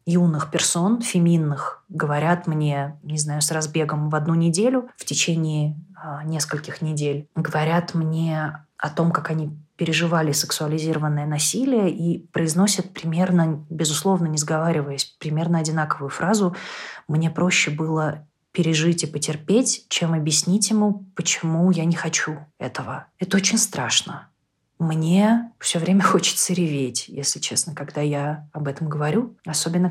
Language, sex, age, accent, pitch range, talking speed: Russian, female, 20-39, native, 150-175 Hz, 130 wpm